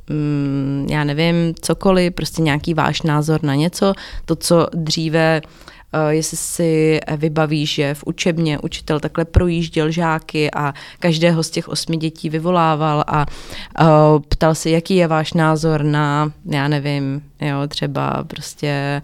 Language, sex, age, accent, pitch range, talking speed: Czech, female, 30-49, native, 150-175 Hz, 130 wpm